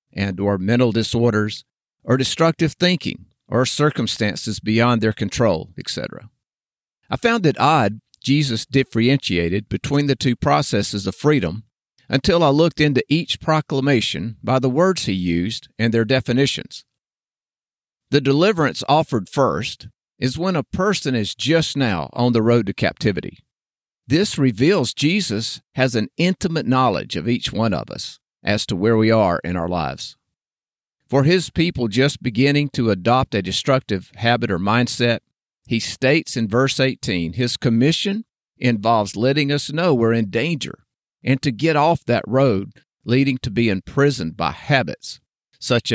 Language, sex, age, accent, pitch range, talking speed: English, male, 50-69, American, 105-140 Hz, 150 wpm